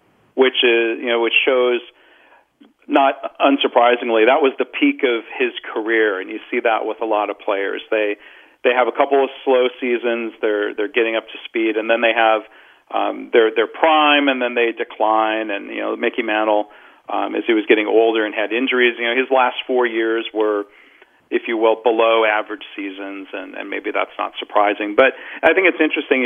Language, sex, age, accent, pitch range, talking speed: English, male, 40-59, American, 110-130 Hz, 200 wpm